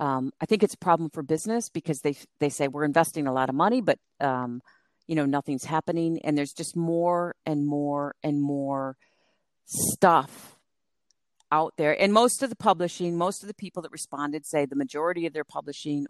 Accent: American